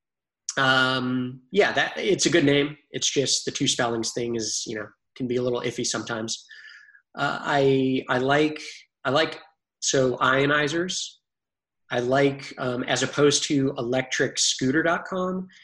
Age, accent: 20-39, American